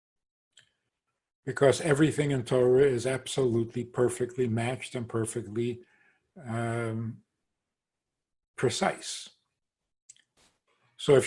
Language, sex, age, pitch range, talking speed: English, male, 50-69, 120-145 Hz, 75 wpm